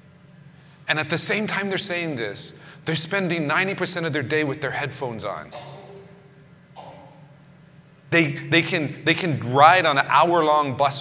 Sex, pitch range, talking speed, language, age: male, 135-160 Hz, 155 wpm, English, 30-49